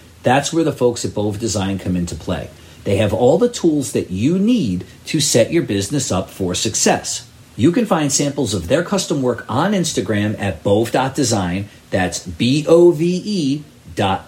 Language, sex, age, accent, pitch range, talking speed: English, male, 40-59, American, 105-140 Hz, 170 wpm